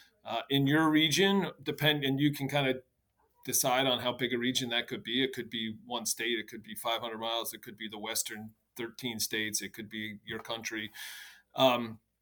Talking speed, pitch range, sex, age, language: 205 wpm, 115-145 Hz, male, 30-49, English